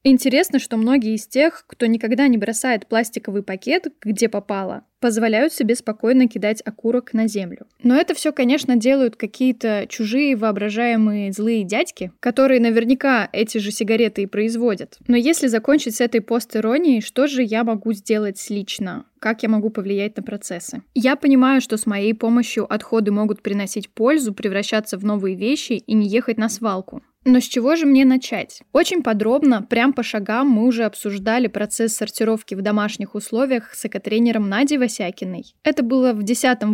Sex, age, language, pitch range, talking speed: female, 10-29, Russian, 215-255 Hz, 165 wpm